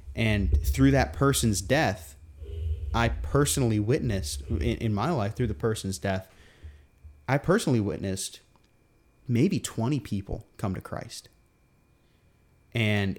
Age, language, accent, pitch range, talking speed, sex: 30-49, English, American, 95-120 Hz, 120 wpm, male